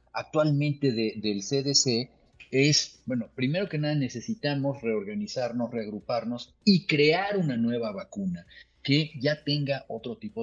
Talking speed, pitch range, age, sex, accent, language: 120 wpm, 120-165 Hz, 40-59, male, Mexican, Spanish